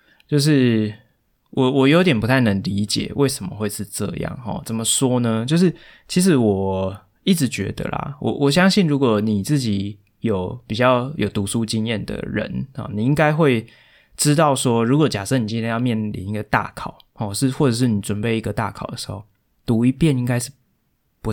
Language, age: Chinese, 20-39